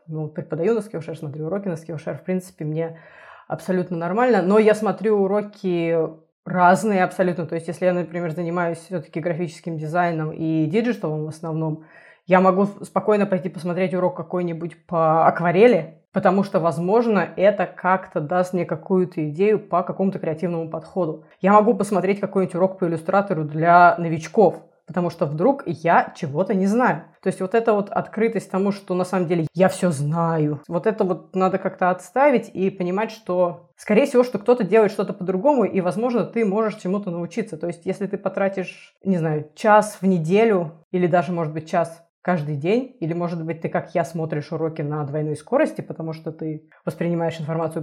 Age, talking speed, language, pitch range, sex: 20-39, 175 wpm, Russian, 165-200 Hz, female